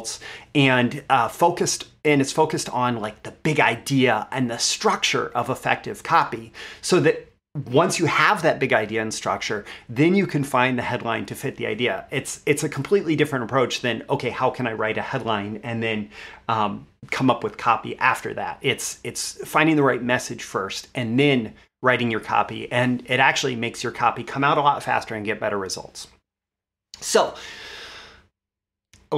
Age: 30-49